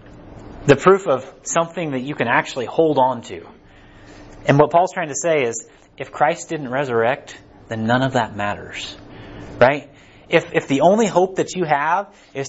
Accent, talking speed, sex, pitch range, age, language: American, 180 wpm, male, 115-165 Hz, 30-49, English